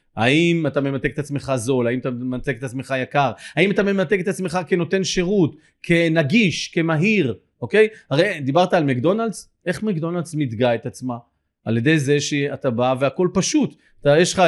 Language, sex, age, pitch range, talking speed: Hebrew, male, 30-49, 150-215 Hz, 170 wpm